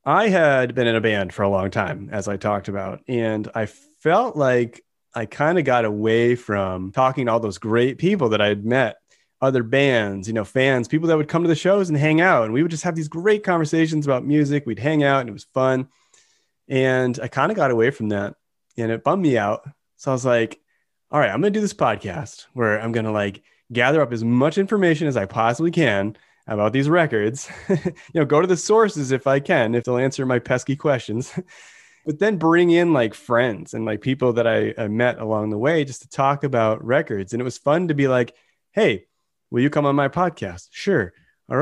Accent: American